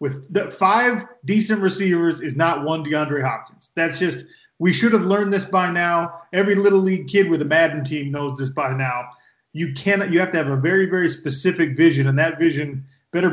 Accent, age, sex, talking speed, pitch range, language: American, 30-49, male, 205 wpm, 150-185 Hz, English